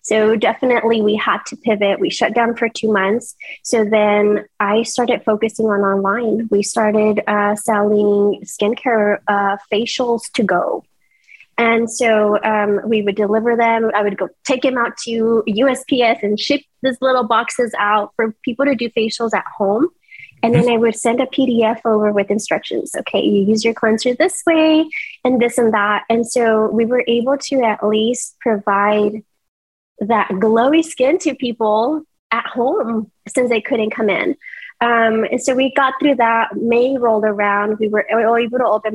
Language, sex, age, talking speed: English, female, 20-39, 175 wpm